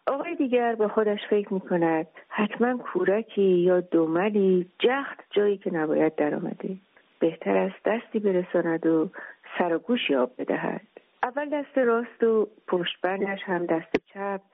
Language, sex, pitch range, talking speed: Persian, female, 170-220 Hz, 150 wpm